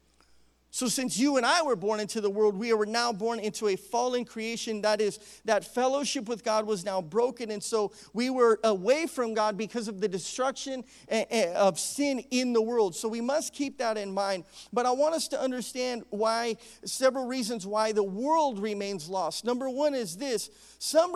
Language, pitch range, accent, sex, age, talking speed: English, 195-270 Hz, American, male, 40-59, 195 wpm